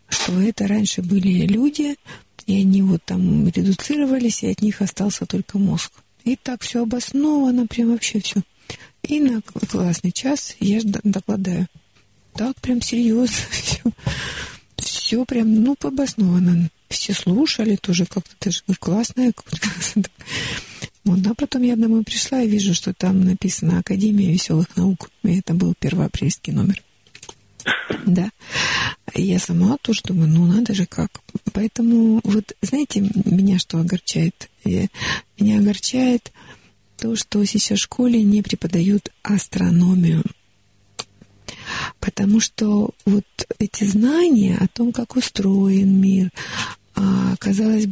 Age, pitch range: 50-69, 190-225 Hz